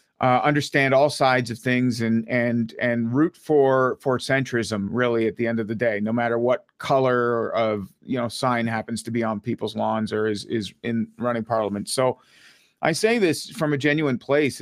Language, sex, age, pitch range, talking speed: English, male, 40-59, 120-135 Hz, 195 wpm